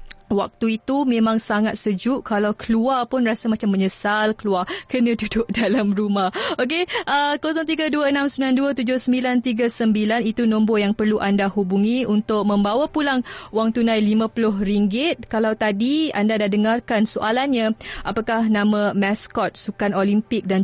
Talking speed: 125 wpm